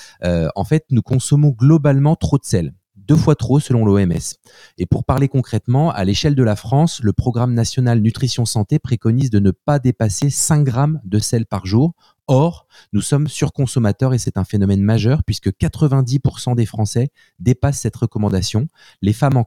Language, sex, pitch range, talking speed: French, male, 105-140 Hz, 180 wpm